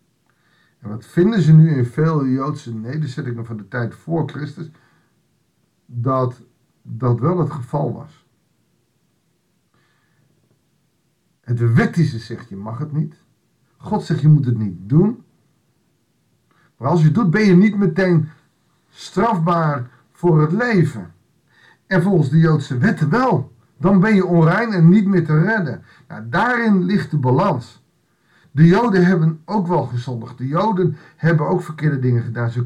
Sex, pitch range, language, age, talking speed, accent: male, 125-175 Hz, Dutch, 50-69, 150 wpm, Dutch